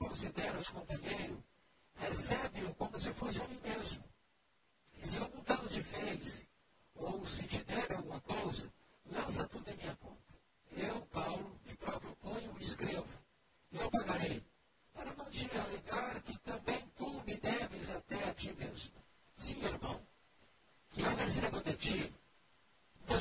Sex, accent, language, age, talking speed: male, Brazilian, Portuguese, 60-79, 145 wpm